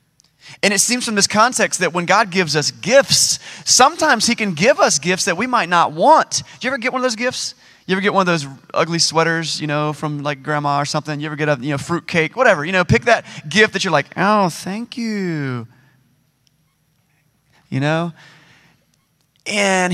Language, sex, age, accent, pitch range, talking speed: English, male, 30-49, American, 135-180 Hz, 205 wpm